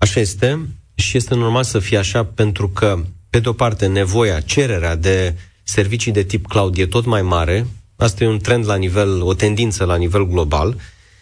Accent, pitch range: native, 95-115 Hz